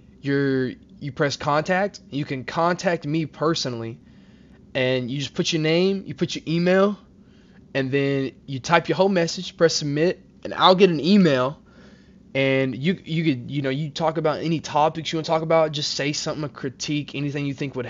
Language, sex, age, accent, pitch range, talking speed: English, male, 20-39, American, 135-165 Hz, 195 wpm